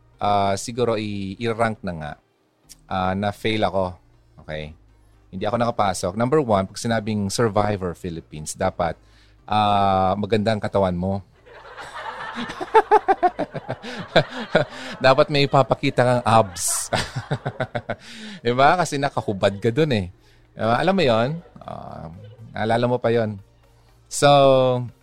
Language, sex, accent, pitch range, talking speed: Filipino, male, native, 95-115 Hz, 115 wpm